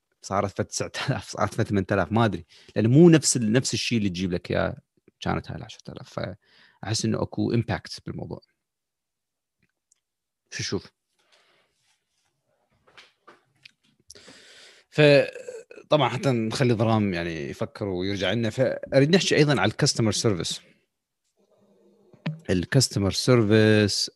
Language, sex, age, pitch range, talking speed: Arabic, male, 30-49, 95-135 Hz, 110 wpm